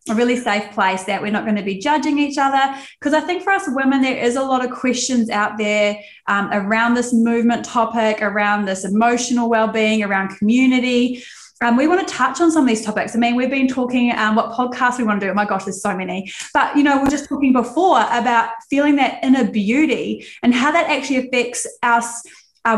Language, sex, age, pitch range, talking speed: English, female, 20-39, 220-275 Hz, 225 wpm